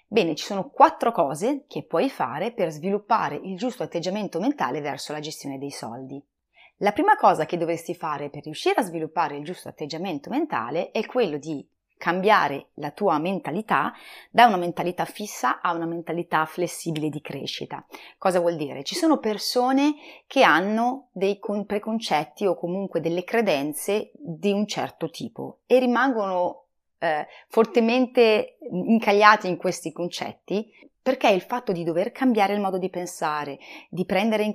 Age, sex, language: 30-49, female, Italian